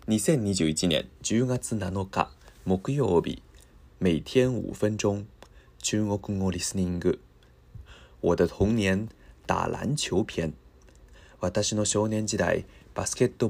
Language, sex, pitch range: Japanese, male, 85-110 Hz